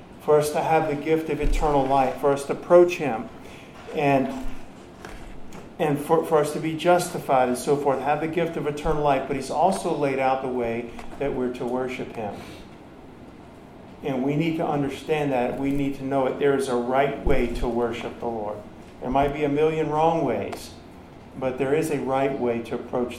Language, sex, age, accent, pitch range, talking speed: English, male, 50-69, American, 130-155 Hz, 200 wpm